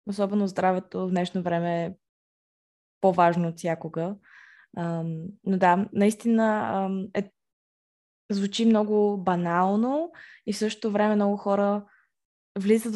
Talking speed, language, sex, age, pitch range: 100 wpm, Bulgarian, female, 20-39, 190-210 Hz